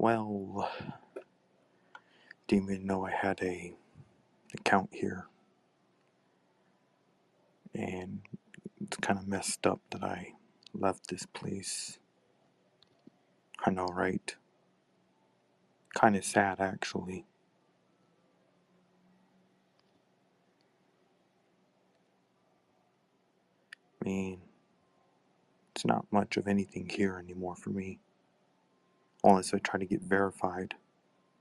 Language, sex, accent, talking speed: English, male, American, 85 wpm